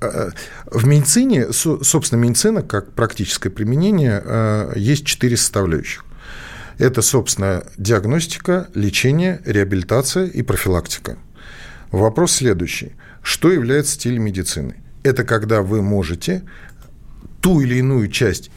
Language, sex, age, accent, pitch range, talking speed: Russian, male, 50-69, native, 110-160 Hz, 100 wpm